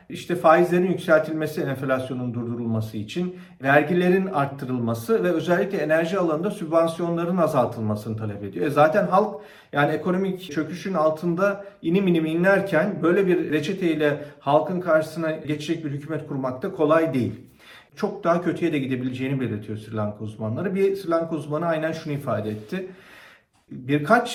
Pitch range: 145-195 Hz